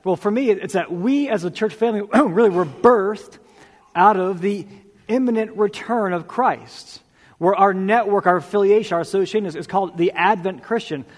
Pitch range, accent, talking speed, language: 160-205 Hz, American, 170 wpm, English